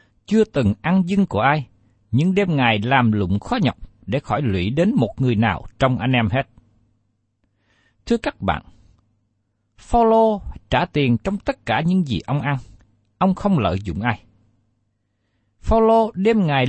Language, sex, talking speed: Vietnamese, male, 160 wpm